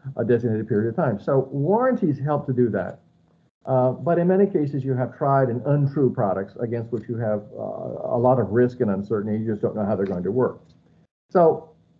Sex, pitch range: male, 115-150 Hz